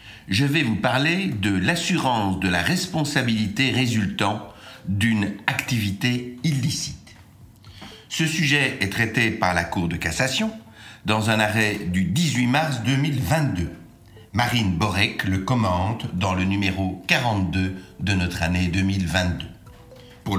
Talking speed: 125 wpm